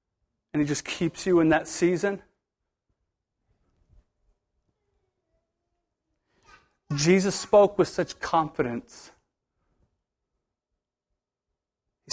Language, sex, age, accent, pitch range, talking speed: English, male, 40-59, American, 170-235 Hz, 70 wpm